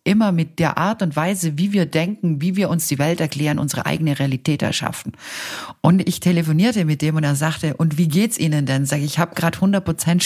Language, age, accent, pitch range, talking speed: German, 50-69, German, 145-185 Hz, 230 wpm